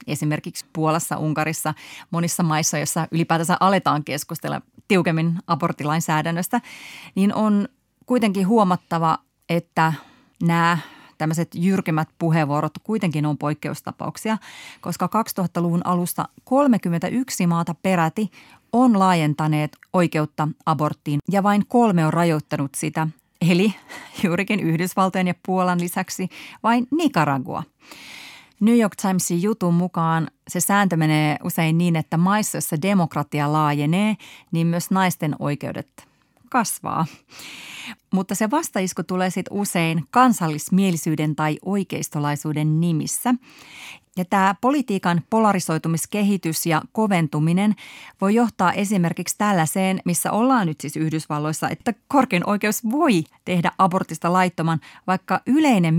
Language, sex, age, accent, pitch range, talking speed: Finnish, female, 30-49, native, 160-200 Hz, 110 wpm